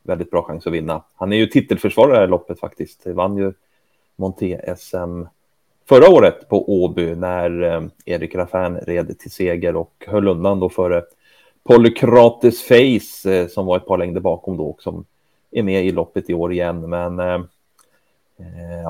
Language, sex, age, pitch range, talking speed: Swedish, male, 30-49, 90-105 Hz, 170 wpm